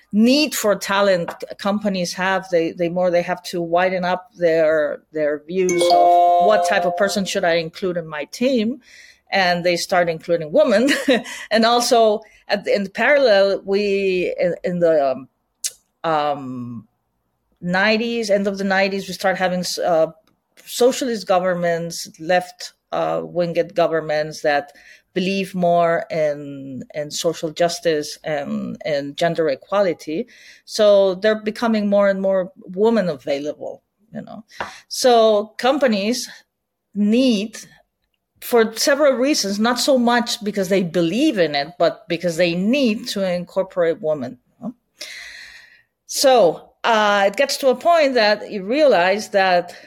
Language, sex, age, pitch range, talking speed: English, female, 40-59, 170-220 Hz, 140 wpm